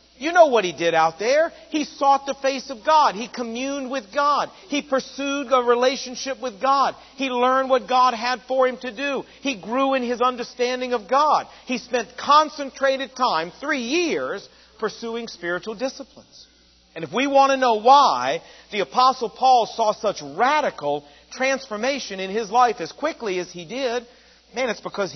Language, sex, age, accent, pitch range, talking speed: English, male, 50-69, American, 190-265 Hz, 175 wpm